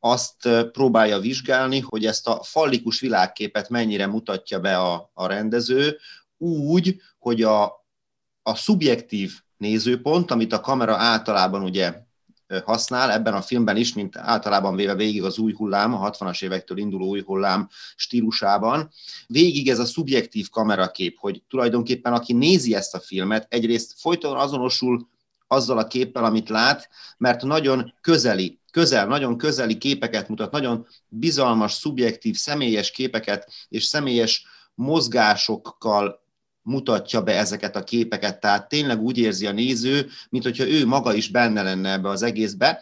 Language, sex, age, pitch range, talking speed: Hungarian, male, 30-49, 105-130 Hz, 140 wpm